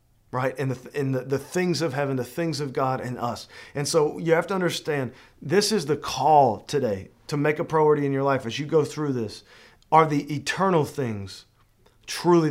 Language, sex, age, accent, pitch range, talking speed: English, male, 40-59, American, 125-155 Hz, 210 wpm